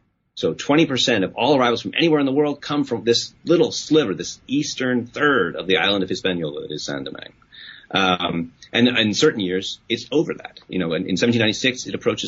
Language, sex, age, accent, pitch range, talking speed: English, male, 30-49, American, 90-120 Hz, 210 wpm